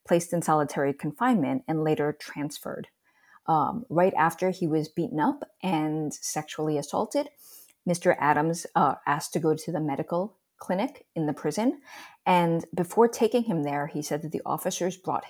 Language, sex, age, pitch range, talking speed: English, female, 30-49, 150-200 Hz, 160 wpm